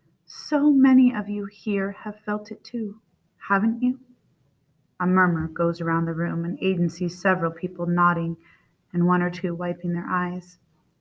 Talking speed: 165 wpm